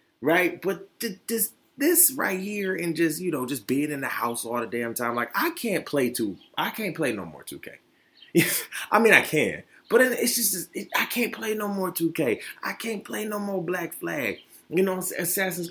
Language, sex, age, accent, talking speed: English, male, 20-39, American, 210 wpm